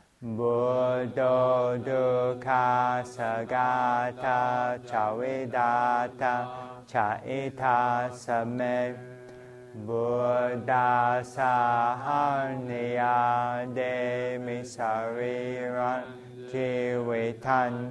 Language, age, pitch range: English, 30-49, 120-125 Hz